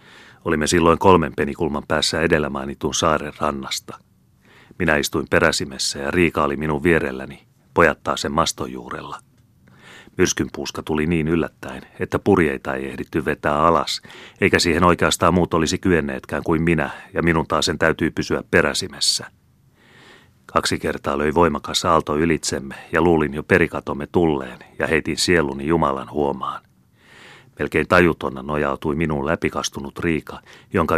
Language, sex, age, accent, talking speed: Finnish, male, 30-49, native, 130 wpm